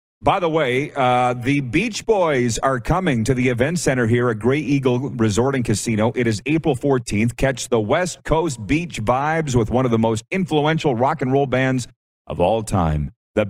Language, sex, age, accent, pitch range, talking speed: English, male, 40-59, American, 100-135 Hz, 195 wpm